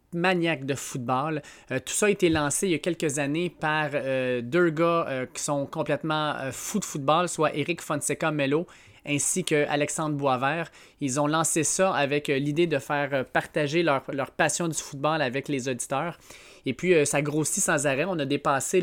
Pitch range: 140-170 Hz